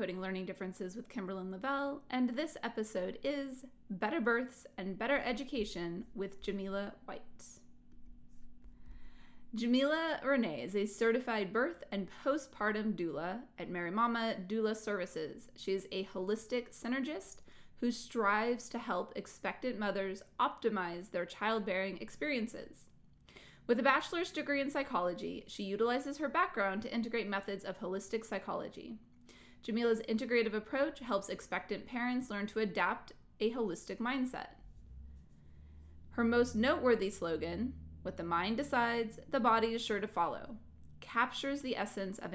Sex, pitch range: female, 190-245 Hz